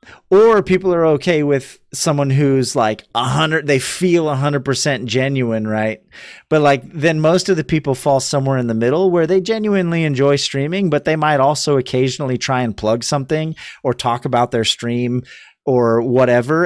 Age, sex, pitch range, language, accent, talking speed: 30-49, male, 120-170 Hz, English, American, 180 wpm